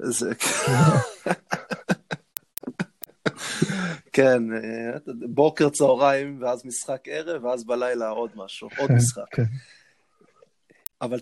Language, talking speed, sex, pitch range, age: Hebrew, 70 wpm, male, 115-135 Hz, 20-39